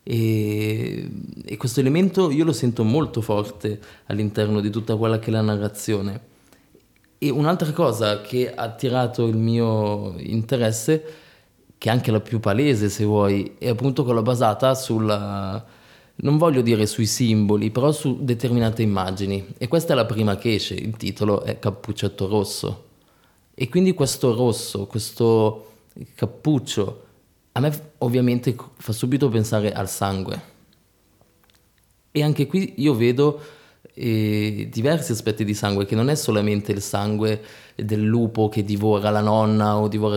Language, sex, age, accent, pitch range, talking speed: Italian, male, 20-39, native, 105-125 Hz, 145 wpm